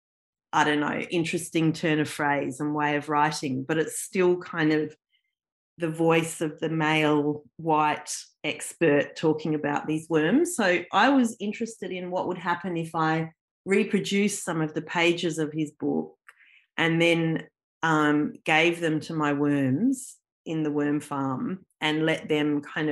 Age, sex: 30-49, female